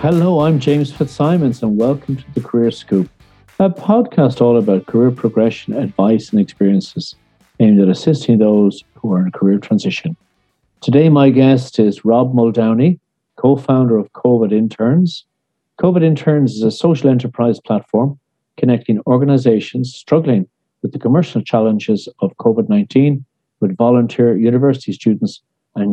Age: 50-69